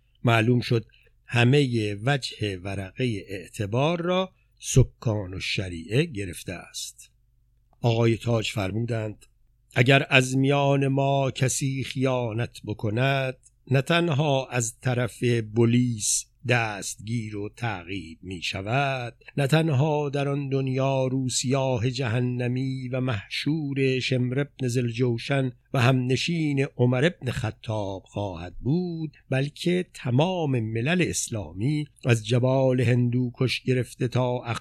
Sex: male